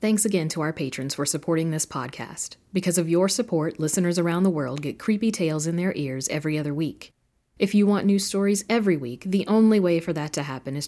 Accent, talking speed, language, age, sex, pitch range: American, 225 wpm, English, 40-59, female, 145-200 Hz